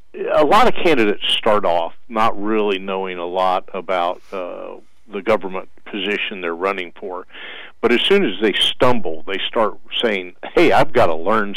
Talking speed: 170 wpm